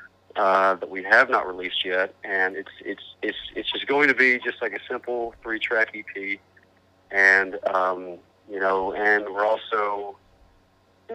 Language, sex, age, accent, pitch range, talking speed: English, male, 40-59, American, 95-100 Hz, 160 wpm